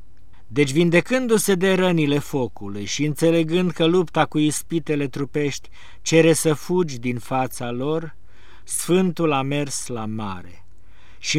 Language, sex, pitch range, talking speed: Romanian, male, 110-155 Hz, 125 wpm